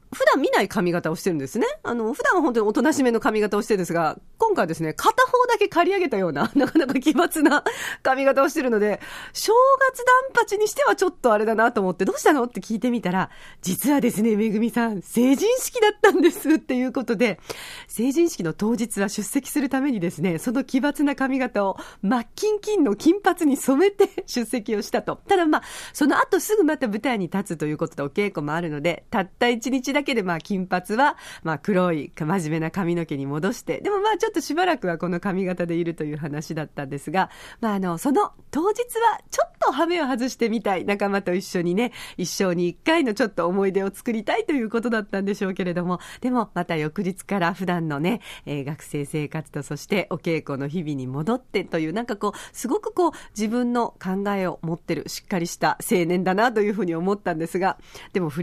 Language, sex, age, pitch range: Japanese, female, 40-59, 180-290 Hz